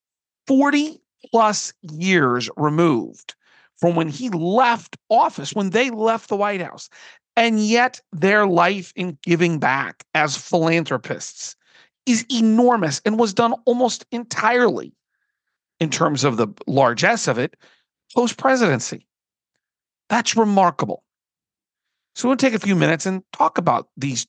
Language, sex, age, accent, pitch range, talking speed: English, male, 40-59, American, 155-225 Hz, 125 wpm